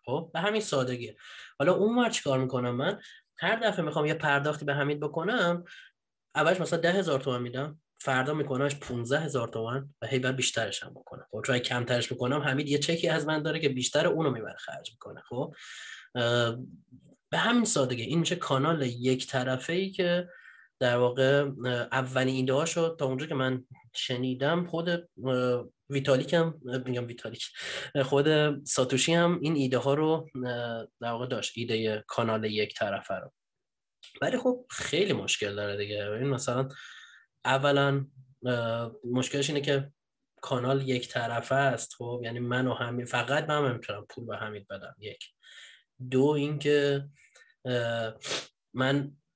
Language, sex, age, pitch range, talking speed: Persian, male, 20-39, 125-150 Hz, 145 wpm